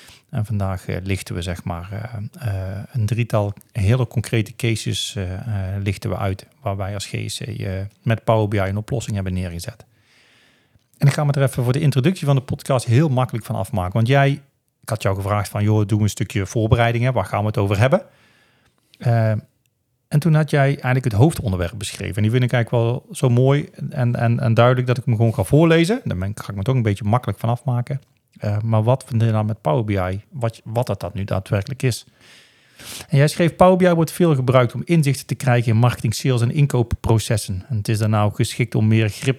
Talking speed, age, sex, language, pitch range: 220 wpm, 40-59, male, Dutch, 105-135 Hz